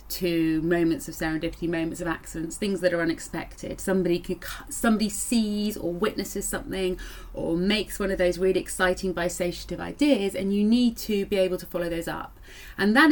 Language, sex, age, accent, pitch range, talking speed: English, female, 30-49, British, 175-205 Hz, 180 wpm